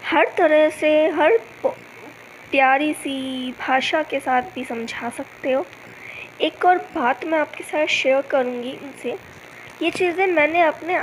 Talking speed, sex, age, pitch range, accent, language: 135 wpm, female, 20-39, 275-320 Hz, native, Hindi